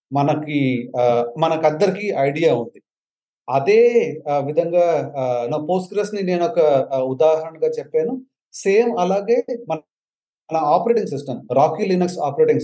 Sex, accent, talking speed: male, native, 105 wpm